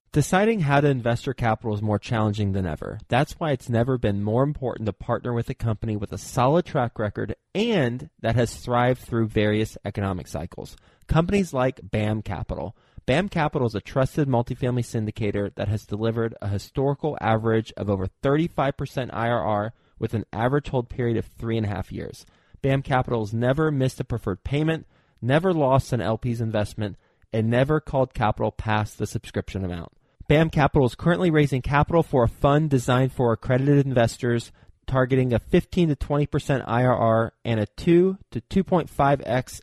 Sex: male